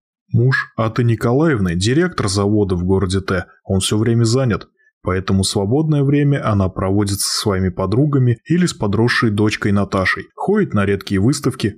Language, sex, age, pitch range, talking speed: Russian, male, 20-39, 100-145 Hz, 155 wpm